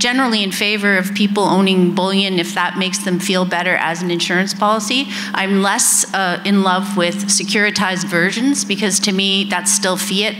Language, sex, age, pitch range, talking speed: English, female, 40-59, 180-210 Hz, 180 wpm